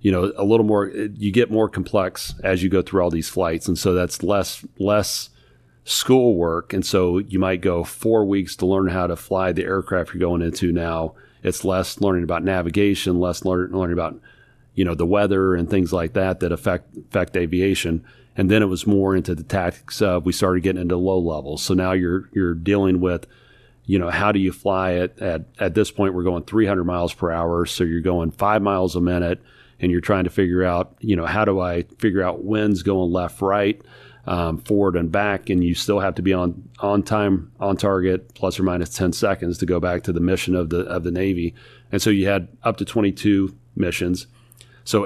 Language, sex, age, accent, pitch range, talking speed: English, male, 40-59, American, 90-100 Hz, 220 wpm